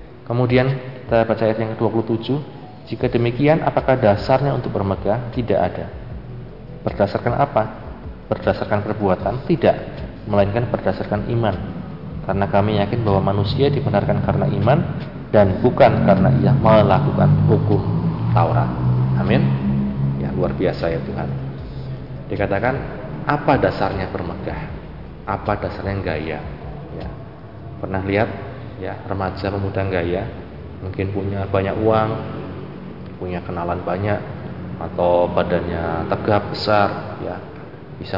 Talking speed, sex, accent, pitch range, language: 110 wpm, male, native, 90-115 Hz, Indonesian